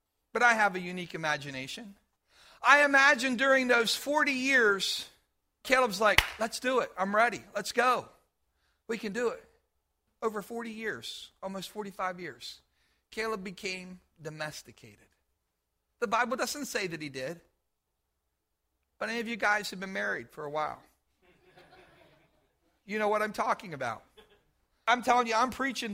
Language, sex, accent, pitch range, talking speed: English, male, American, 185-250 Hz, 145 wpm